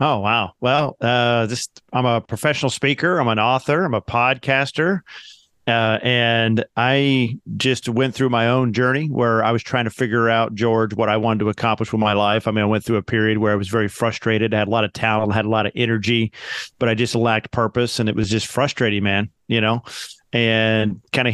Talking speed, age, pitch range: 215 wpm, 40-59, 110-120 Hz